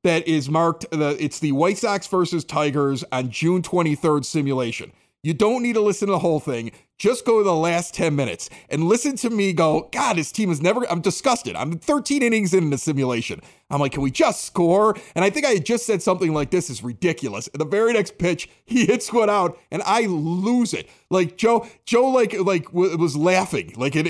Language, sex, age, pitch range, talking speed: English, male, 30-49, 145-195 Hz, 220 wpm